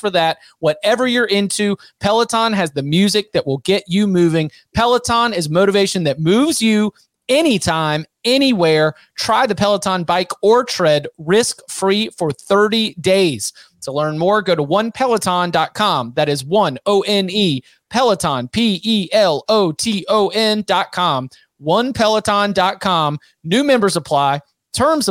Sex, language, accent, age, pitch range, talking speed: male, English, American, 30-49, 145-195 Hz, 115 wpm